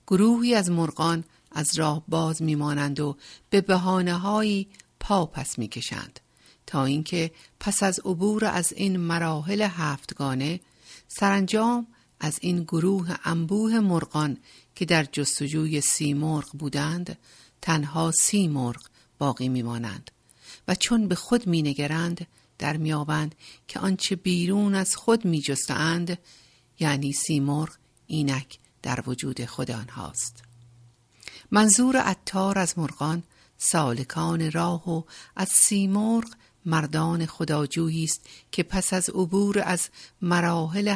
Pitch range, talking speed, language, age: 150-185 Hz, 110 wpm, Persian, 50-69